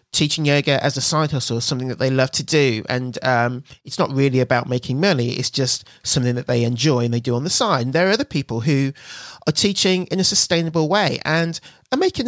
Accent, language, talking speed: British, English, 235 wpm